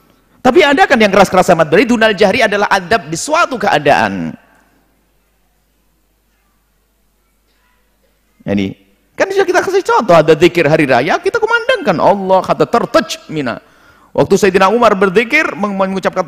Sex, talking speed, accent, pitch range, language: male, 130 wpm, native, 155-230 Hz, Indonesian